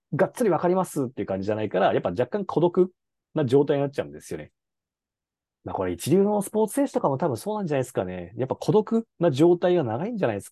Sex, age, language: male, 40-59, Japanese